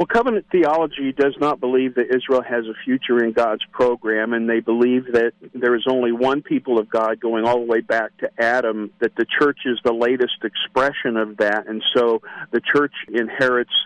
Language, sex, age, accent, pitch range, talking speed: English, male, 50-69, American, 120-145 Hz, 200 wpm